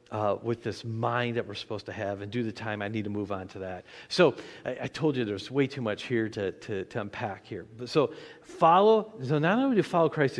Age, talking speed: 40-59, 255 wpm